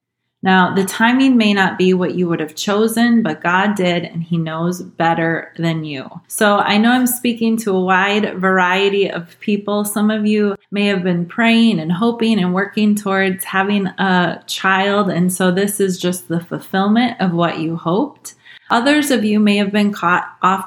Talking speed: 190 wpm